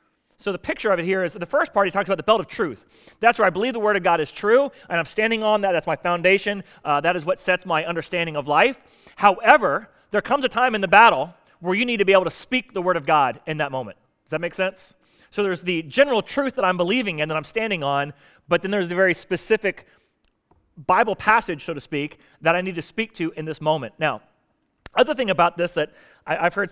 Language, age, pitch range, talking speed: English, 30-49, 155-200 Hz, 255 wpm